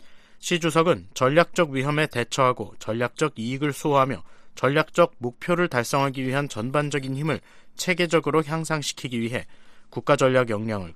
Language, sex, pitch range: Korean, male, 120-150 Hz